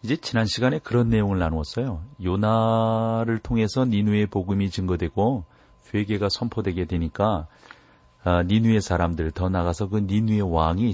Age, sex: 40-59, male